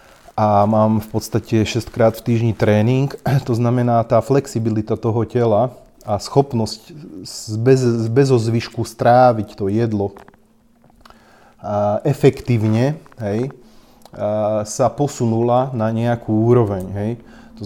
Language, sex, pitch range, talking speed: Slovak, male, 100-115 Hz, 110 wpm